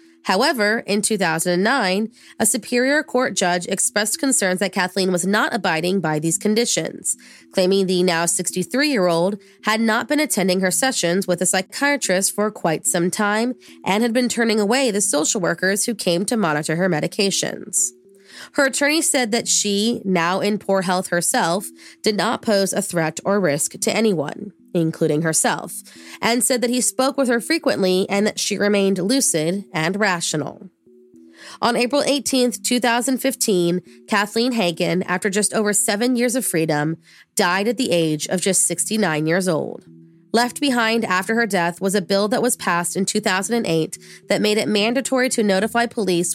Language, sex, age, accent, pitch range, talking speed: English, female, 20-39, American, 180-230 Hz, 165 wpm